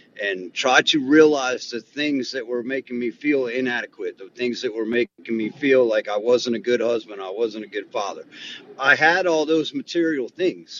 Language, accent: English, American